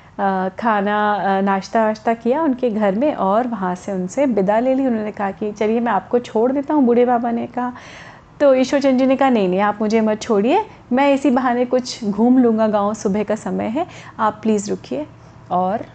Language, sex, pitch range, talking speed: Hindi, female, 210-265 Hz, 205 wpm